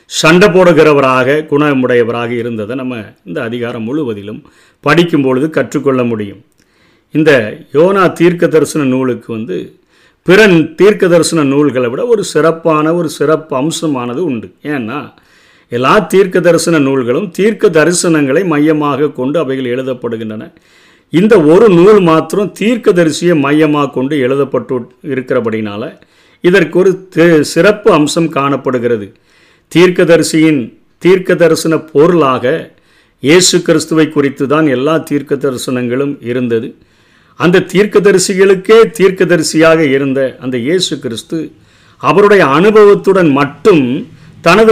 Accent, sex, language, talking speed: native, male, Tamil, 100 wpm